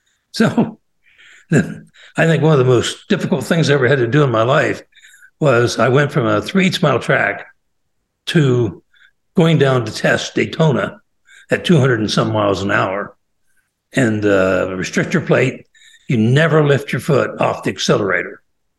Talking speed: 160 wpm